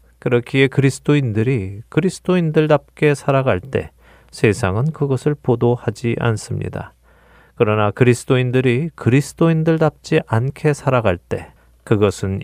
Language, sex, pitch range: Korean, male, 100-135 Hz